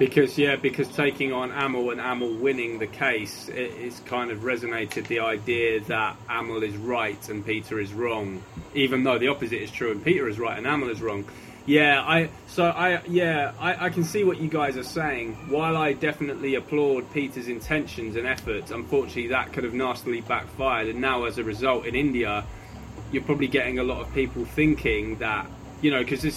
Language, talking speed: Hindi, 200 wpm